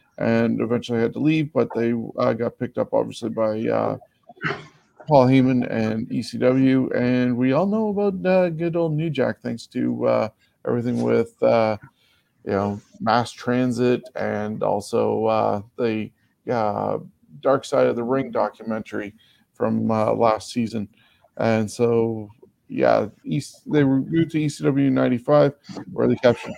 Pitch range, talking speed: 115-130 Hz, 150 wpm